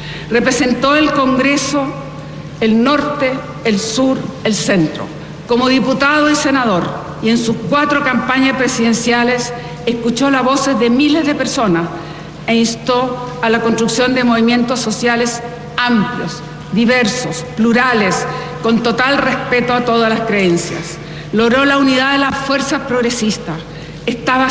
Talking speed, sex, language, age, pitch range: 125 wpm, female, Spanish, 60-79, 210-260 Hz